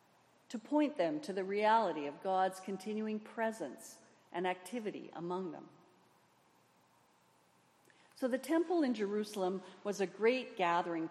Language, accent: English, American